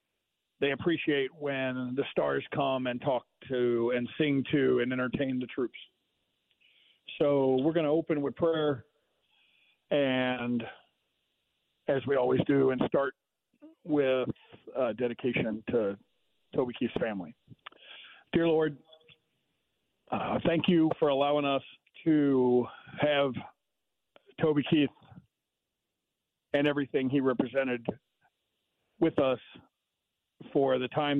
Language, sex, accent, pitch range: English, male, American, 130-150 Hz